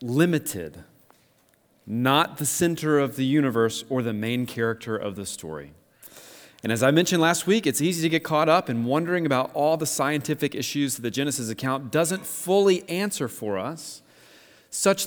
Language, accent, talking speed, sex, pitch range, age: English, American, 170 wpm, male, 110-155 Hz, 30-49